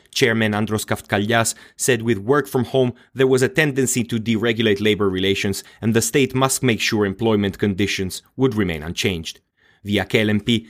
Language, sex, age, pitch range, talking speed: English, male, 30-49, 105-125 Hz, 165 wpm